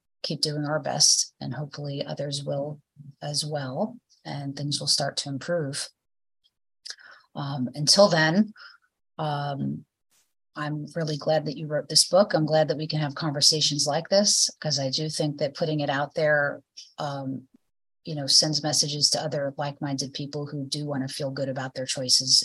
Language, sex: English, female